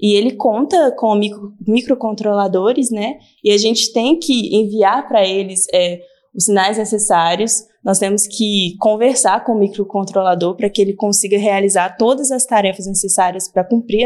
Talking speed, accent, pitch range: 150 wpm, Brazilian, 200-245 Hz